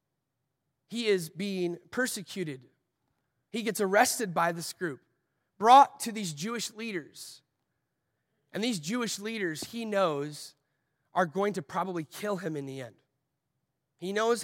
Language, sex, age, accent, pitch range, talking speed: English, male, 30-49, American, 145-200 Hz, 135 wpm